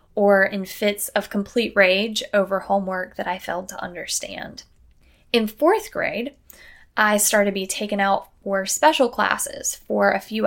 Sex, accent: female, American